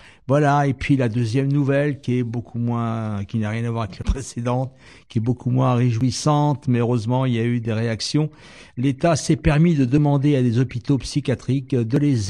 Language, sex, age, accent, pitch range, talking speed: French, male, 60-79, French, 115-140 Hz, 205 wpm